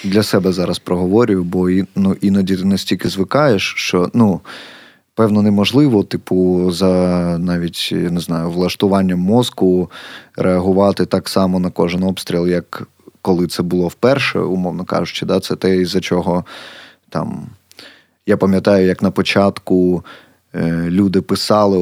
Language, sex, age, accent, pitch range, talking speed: Ukrainian, male, 20-39, native, 90-100 Hz, 140 wpm